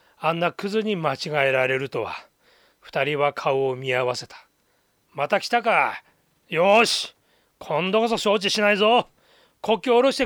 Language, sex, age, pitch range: Japanese, male, 40-59, 180-250 Hz